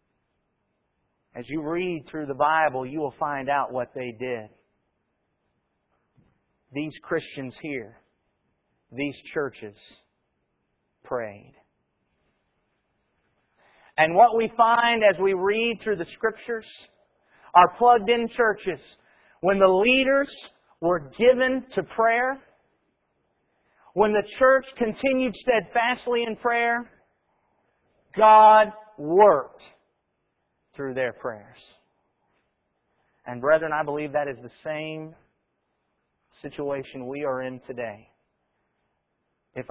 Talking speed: 100 wpm